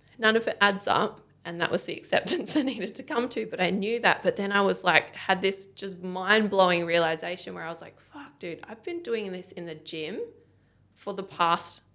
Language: English